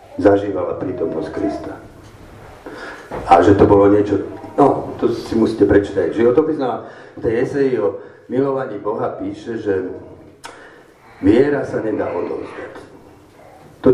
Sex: male